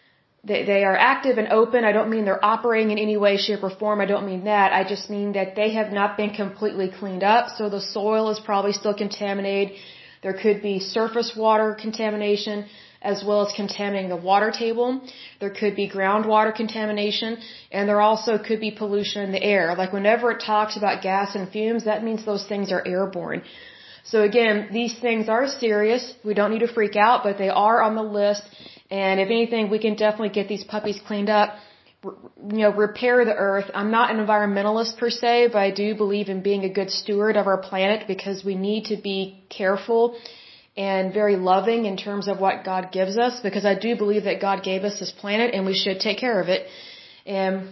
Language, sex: German, female